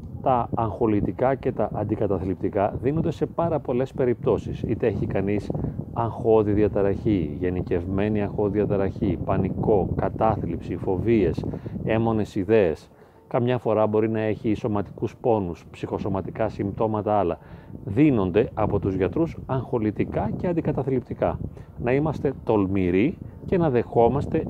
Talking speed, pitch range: 115 wpm, 100-130 Hz